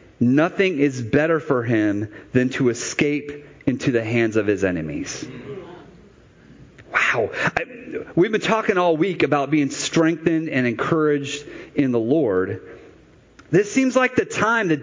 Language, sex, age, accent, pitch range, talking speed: English, male, 40-59, American, 130-195 Hz, 140 wpm